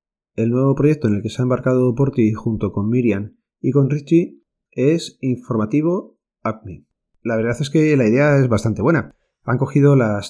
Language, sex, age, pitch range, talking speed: Spanish, male, 30-49, 110-140 Hz, 180 wpm